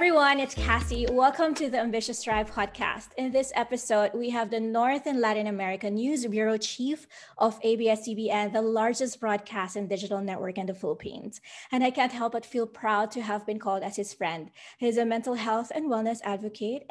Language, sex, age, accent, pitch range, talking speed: English, female, 20-39, Filipino, 215-280 Hz, 195 wpm